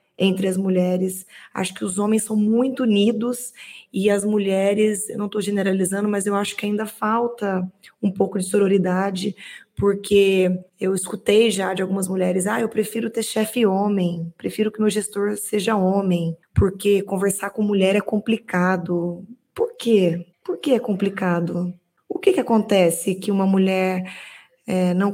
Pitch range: 190-225 Hz